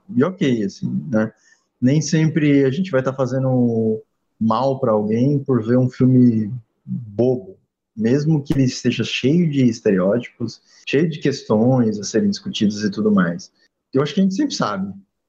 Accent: Brazilian